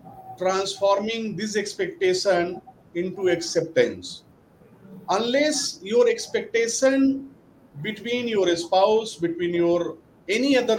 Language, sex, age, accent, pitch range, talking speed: English, male, 50-69, Indian, 170-220 Hz, 85 wpm